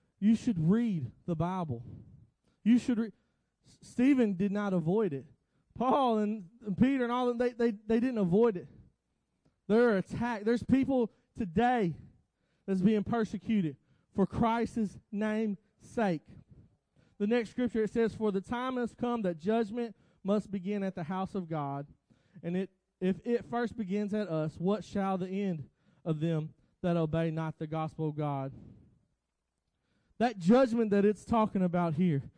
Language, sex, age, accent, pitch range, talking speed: English, male, 20-39, American, 175-230 Hz, 160 wpm